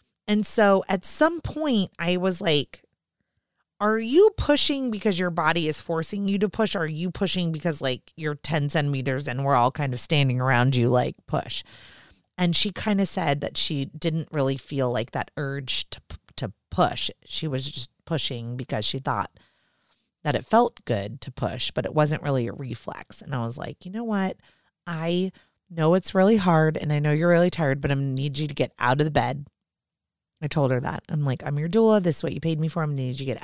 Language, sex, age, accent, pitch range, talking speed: English, female, 30-49, American, 135-180 Hz, 220 wpm